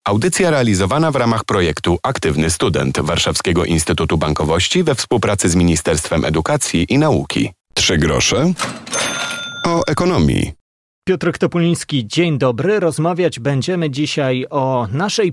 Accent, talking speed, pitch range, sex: native, 115 wpm, 125-175 Hz, male